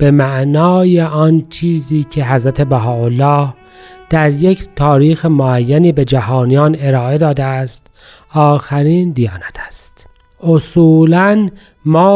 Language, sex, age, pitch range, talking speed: Persian, male, 40-59, 140-180 Hz, 110 wpm